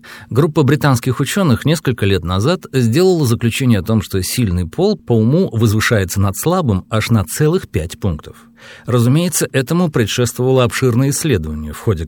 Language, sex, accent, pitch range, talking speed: Russian, male, native, 100-140 Hz, 150 wpm